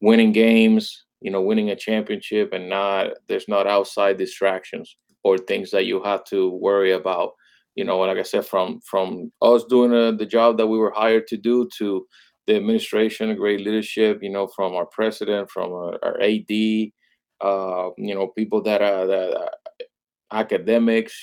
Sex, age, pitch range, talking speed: male, 30-49, 100-115 Hz, 180 wpm